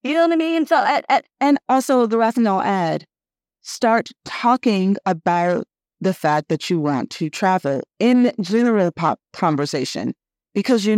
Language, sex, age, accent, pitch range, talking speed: English, female, 30-49, American, 155-200 Hz, 150 wpm